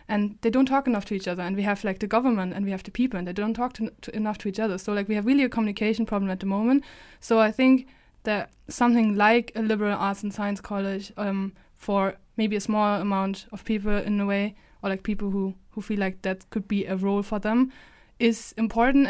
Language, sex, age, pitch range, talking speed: English, female, 20-39, 200-230 Hz, 240 wpm